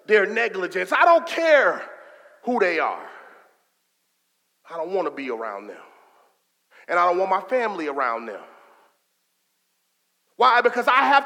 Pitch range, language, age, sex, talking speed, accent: 165-280 Hz, English, 30-49, male, 145 wpm, American